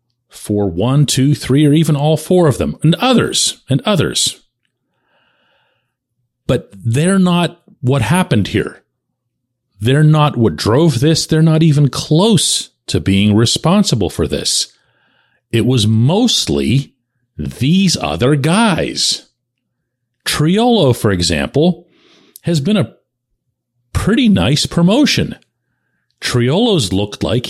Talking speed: 115 wpm